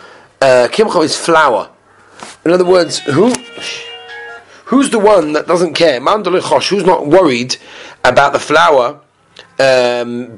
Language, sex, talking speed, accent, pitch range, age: English, male, 120 wpm, British, 130-215 Hz, 30-49